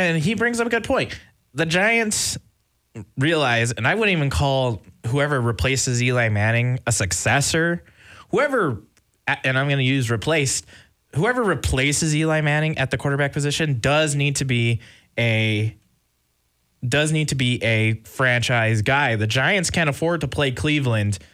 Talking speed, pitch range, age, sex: 155 wpm, 110-145 Hz, 20-39, male